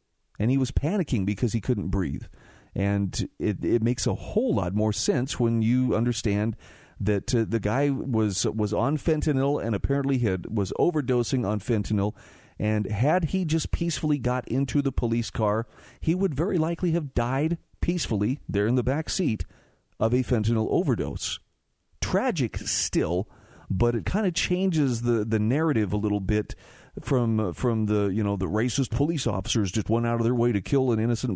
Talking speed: 180 wpm